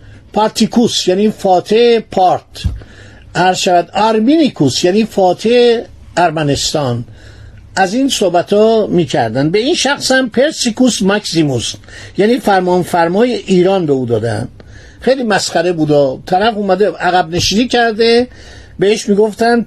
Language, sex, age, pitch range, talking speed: Persian, male, 50-69, 150-230 Hz, 105 wpm